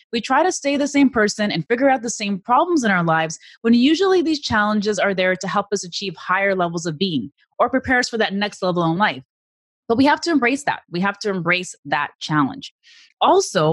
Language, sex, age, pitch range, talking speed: English, female, 20-39, 165-225 Hz, 225 wpm